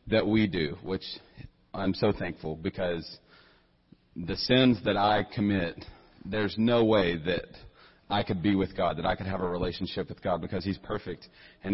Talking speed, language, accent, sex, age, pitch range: 175 wpm, English, American, male, 40-59, 95-115 Hz